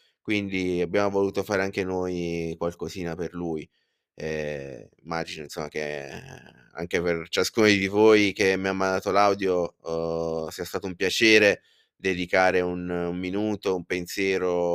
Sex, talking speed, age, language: male, 140 wpm, 20-39, Italian